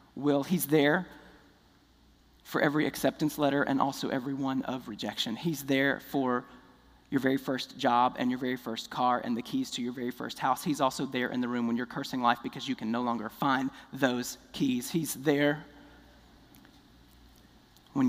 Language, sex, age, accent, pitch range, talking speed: English, male, 40-59, American, 115-150 Hz, 175 wpm